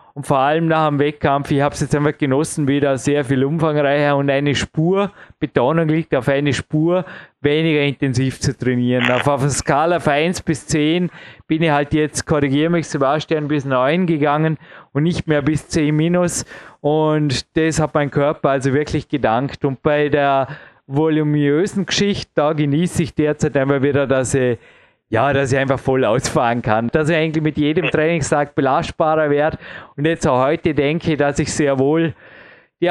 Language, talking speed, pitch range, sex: German, 180 wpm, 140-165 Hz, male